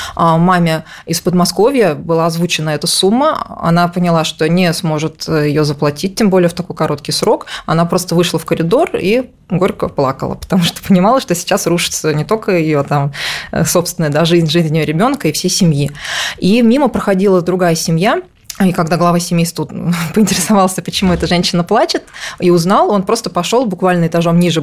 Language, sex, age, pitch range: Russian, female, 20-39, 160-185 Hz